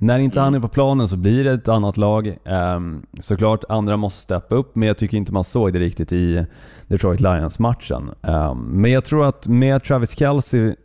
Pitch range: 90-120 Hz